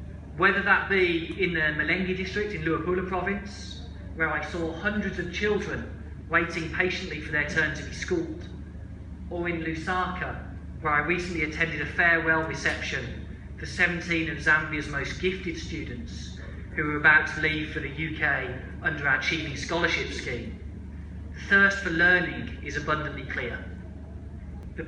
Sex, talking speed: male, 150 wpm